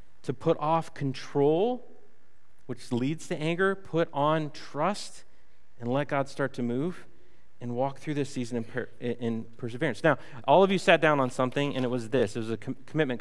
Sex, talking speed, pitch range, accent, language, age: male, 185 wpm, 125-155 Hz, American, English, 30-49